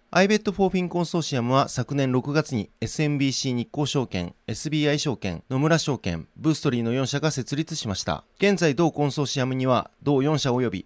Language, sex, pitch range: Japanese, male, 120-155 Hz